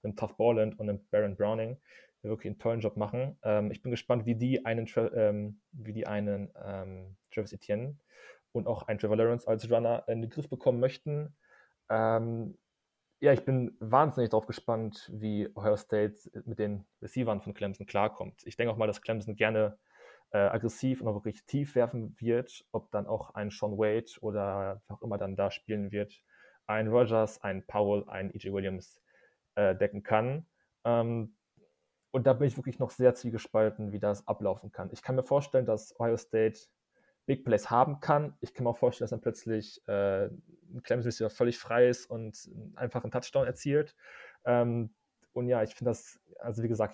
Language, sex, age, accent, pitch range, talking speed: German, male, 20-39, German, 105-120 Hz, 185 wpm